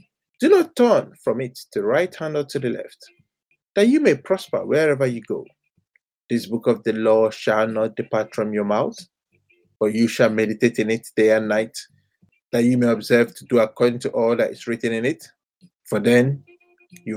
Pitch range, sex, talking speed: 115-175 Hz, male, 195 wpm